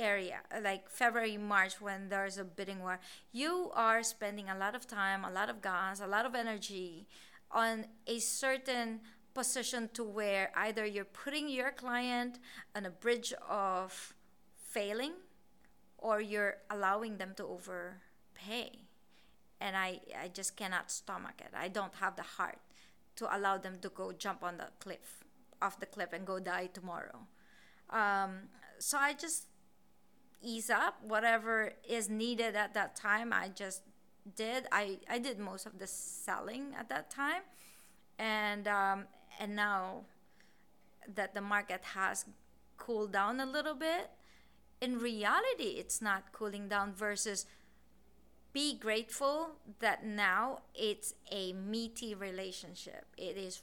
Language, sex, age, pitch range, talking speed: English, female, 20-39, 195-235 Hz, 145 wpm